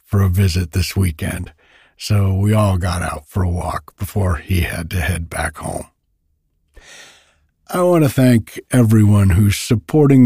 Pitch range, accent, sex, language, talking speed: 90-130 Hz, American, male, English, 160 wpm